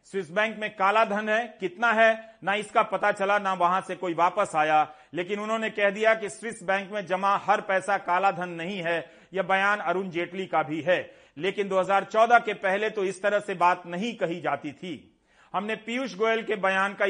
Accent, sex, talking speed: native, male, 205 wpm